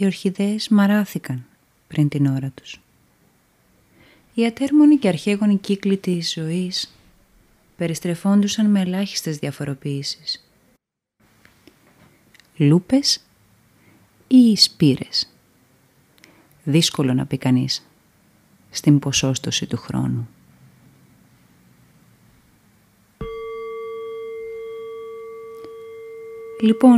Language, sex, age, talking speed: Greek, female, 30-49, 65 wpm